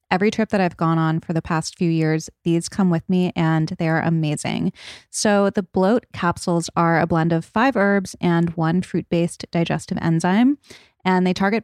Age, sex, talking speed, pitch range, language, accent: 20-39, female, 190 wpm, 165-200 Hz, English, American